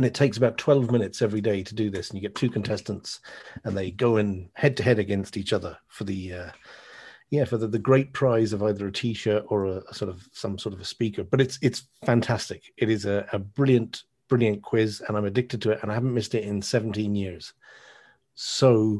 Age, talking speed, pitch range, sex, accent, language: 40-59, 235 wpm, 100-125 Hz, male, British, English